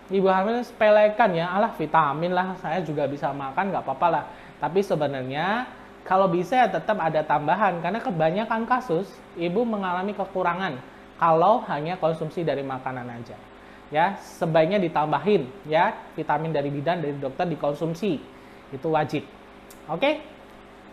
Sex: male